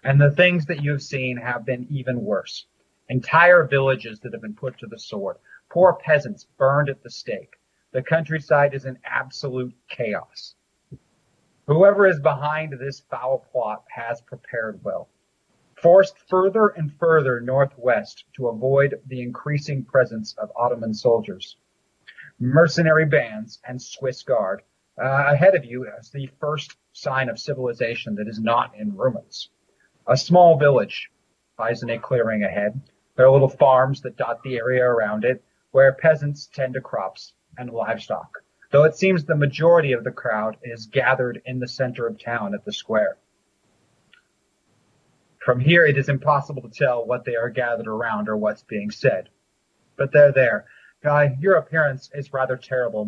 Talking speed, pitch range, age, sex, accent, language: 160 wpm, 125-150 Hz, 40-59, male, American, English